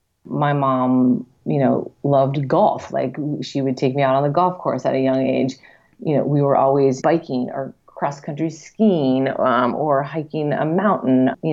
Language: English